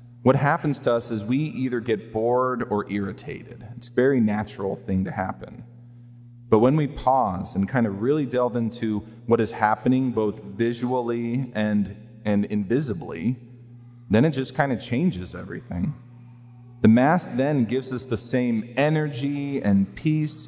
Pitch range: 110-125 Hz